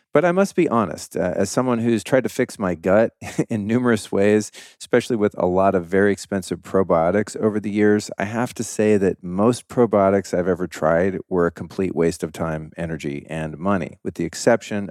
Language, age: English, 40-59